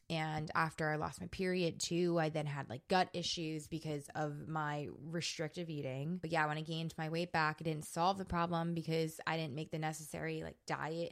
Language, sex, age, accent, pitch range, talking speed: English, female, 20-39, American, 150-165 Hz, 210 wpm